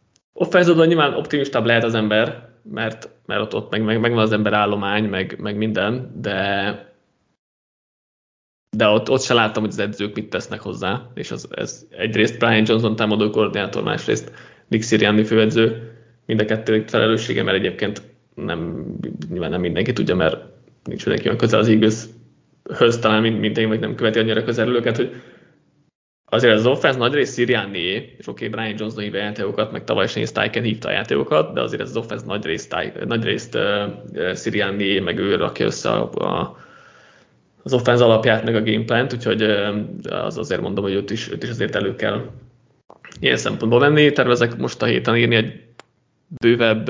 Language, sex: Hungarian, male